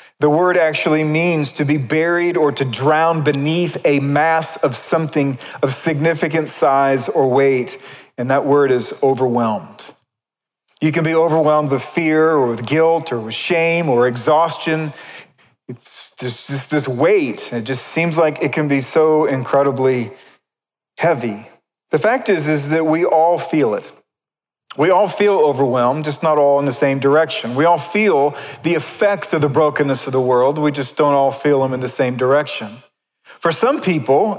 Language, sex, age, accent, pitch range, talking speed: English, male, 40-59, American, 135-160 Hz, 170 wpm